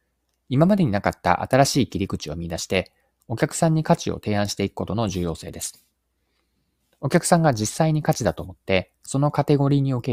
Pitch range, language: 90-135 Hz, Japanese